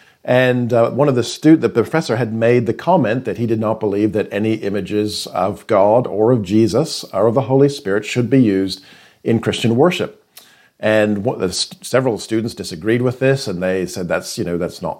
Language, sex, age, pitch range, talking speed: English, male, 50-69, 100-125 Hz, 210 wpm